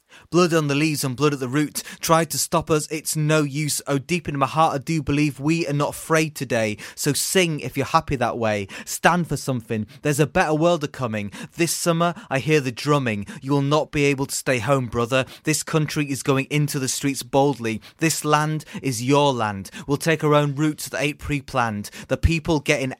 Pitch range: 135-160 Hz